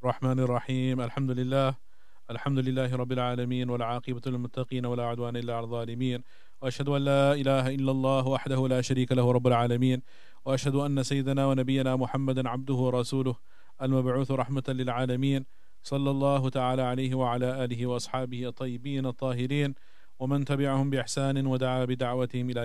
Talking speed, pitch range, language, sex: 120 wpm, 125-140 Hz, English, male